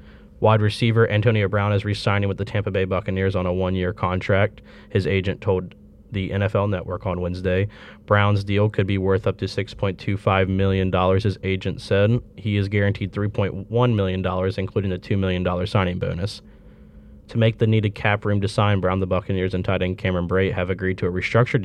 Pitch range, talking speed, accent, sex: 95-105 Hz, 185 wpm, American, male